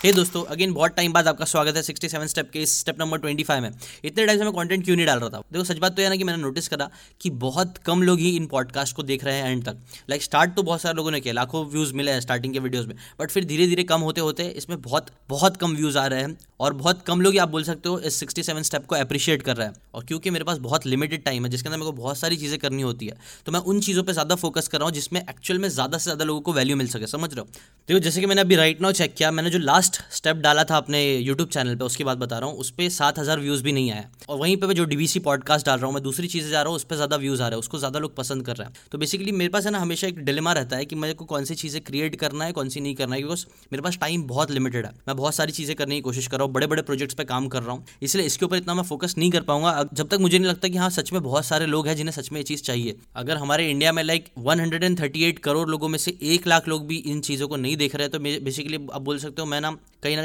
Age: 10-29